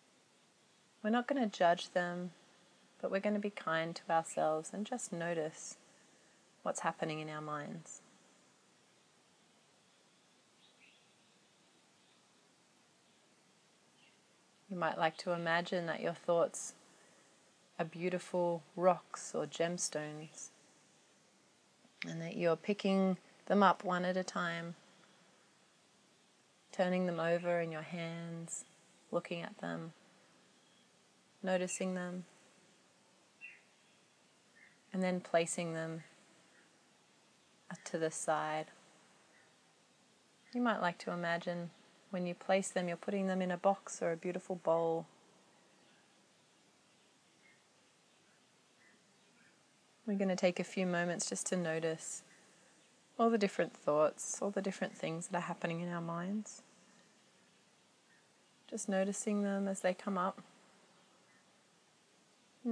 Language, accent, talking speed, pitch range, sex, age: English, Australian, 110 wpm, 170-195 Hz, female, 30-49